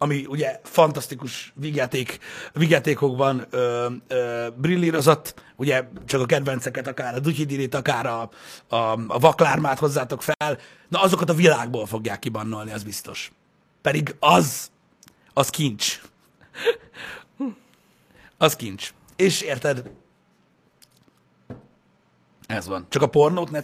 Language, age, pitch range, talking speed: Hungarian, 60-79, 130-170 Hz, 105 wpm